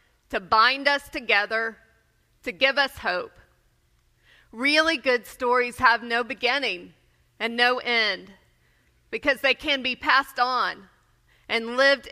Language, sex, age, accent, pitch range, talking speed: English, female, 30-49, American, 220-265 Hz, 125 wpm